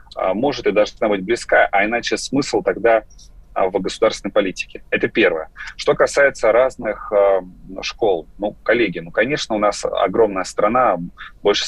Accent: native